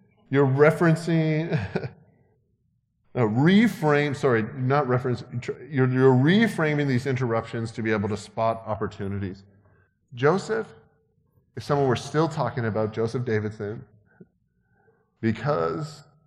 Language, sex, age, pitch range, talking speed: English, male, 40-59, 100-130 Hz, 105 wpm